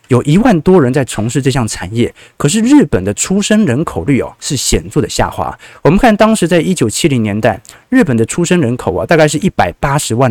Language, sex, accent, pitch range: Chinese, male, native, 105-155 Hz